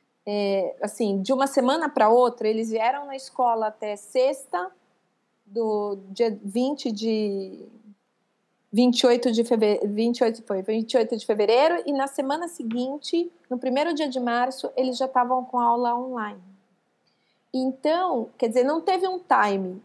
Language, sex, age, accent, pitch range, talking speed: Portuguese, female, 30-49, Brazilian, 225-270 Hz, 140 wpm